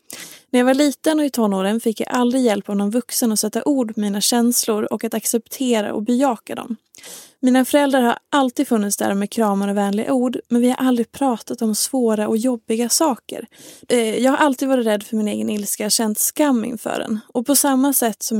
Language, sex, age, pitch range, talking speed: English, female, 20-39, 215-275 Hz, 215 wpm